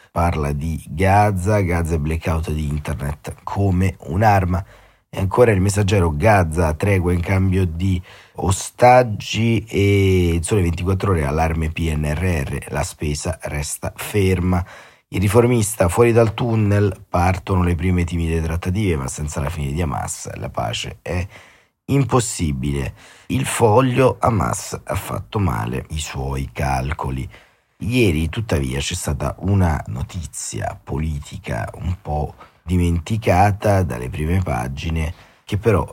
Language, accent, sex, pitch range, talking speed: Italian, native, male, 80-100 Hz, 125 wpm